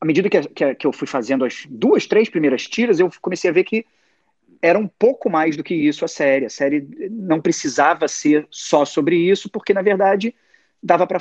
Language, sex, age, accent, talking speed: Portuguese, male, 30-49, Brazilian, 205 wpm